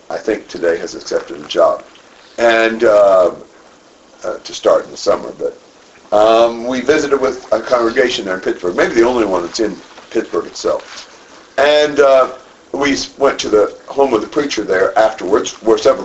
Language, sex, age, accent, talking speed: English, male, 50-69, American, 175 wpm